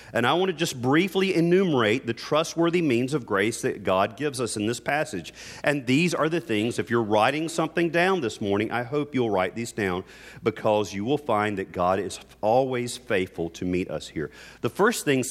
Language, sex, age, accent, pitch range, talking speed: English, male, 40-59, American, 105-155 Hz, 210 wpm